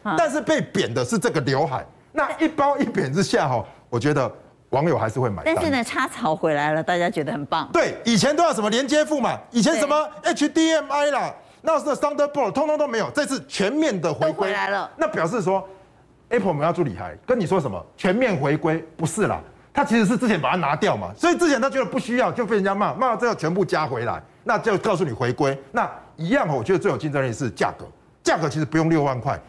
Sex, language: male, Chinese